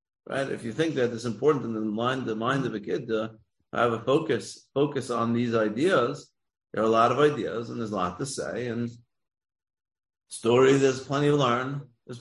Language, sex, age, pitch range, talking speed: English, male, 40-59, 110-140 Hz, 205 wpm